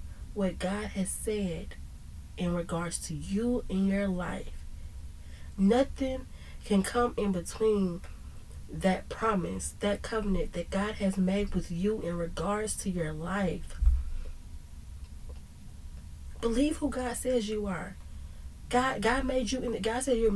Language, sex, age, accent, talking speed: English, female, 20-39, American, 135 wpm